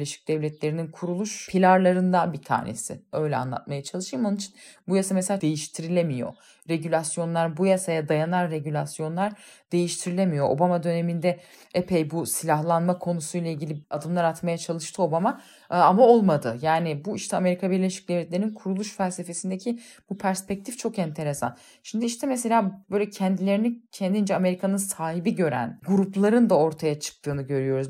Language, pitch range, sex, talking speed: Turkish, 155-195 Hz, female, 130 wpm